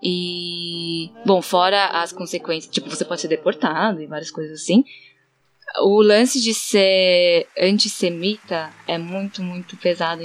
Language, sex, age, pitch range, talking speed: Portuguese, female, 10-29, 175-200 Hz, 135 wpm